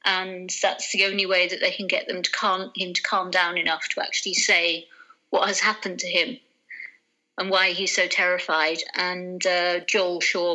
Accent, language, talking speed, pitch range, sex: British, English, 175 wpm, 180-205 Hz, female